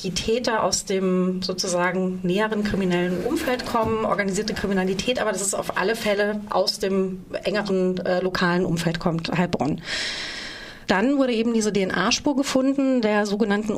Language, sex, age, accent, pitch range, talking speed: German, female, 30-49, German, 195-230 Hz, 145 wpm